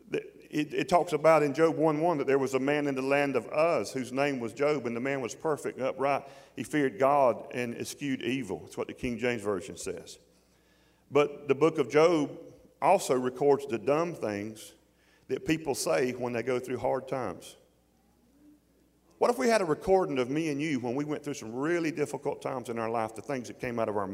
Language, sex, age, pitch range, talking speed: English, male, 40-59, 120-155 Hz, 225 wpm